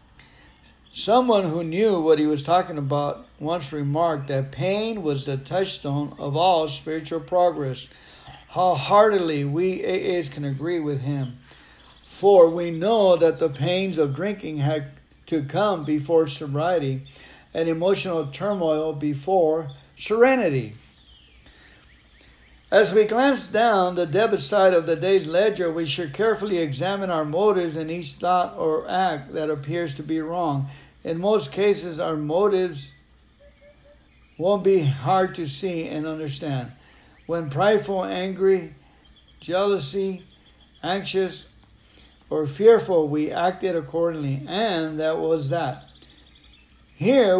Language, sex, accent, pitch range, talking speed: English, male, American, 145-185 Hz, 125 wpm